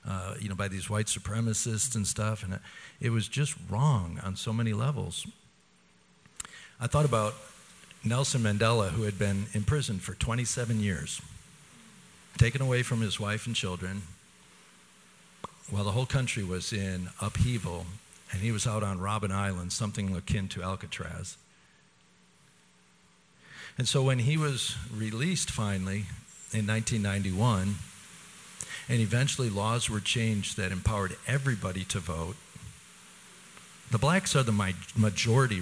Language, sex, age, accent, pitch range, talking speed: English, male, 50-69, American, 95-120 Hz, 135 wpm